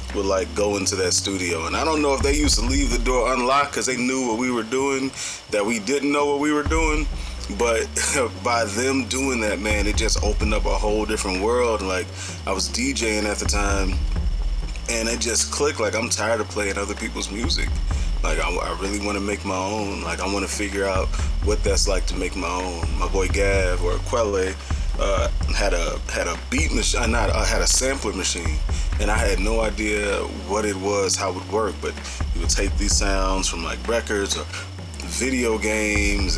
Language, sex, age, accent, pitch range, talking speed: English, male, 20-39, American, 80-105 Hz, 215 wpm